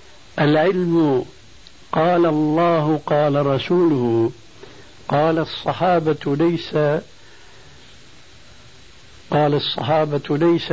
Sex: male